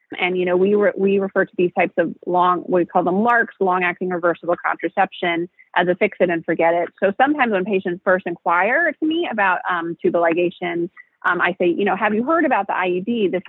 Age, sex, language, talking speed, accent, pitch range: 30-49, female, English, 225 wpm, American, 170-205 Hz